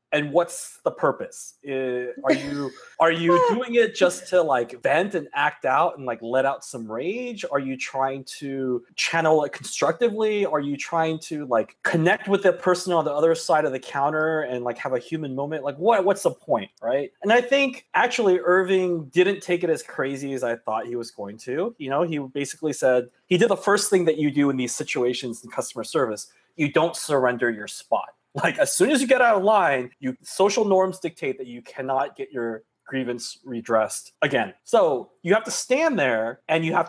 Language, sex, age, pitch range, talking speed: English, male, 20-39, 130-185 Hz, 210 wpm